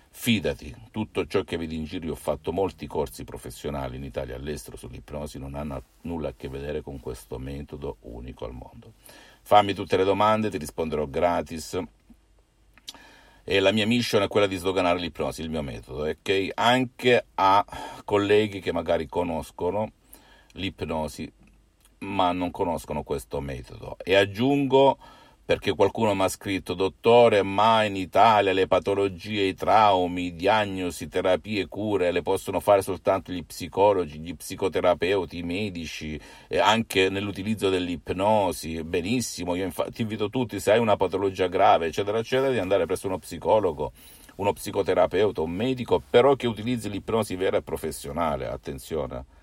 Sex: male